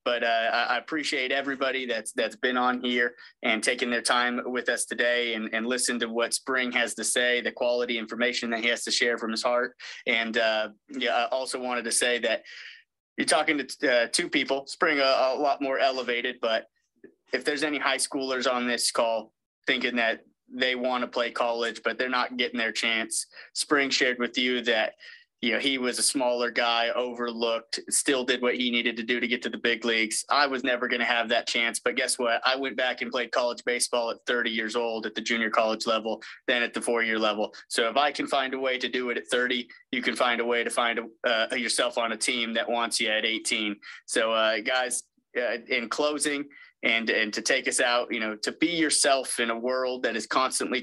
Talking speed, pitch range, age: 220 wpm, 115-130 Hz, 20-39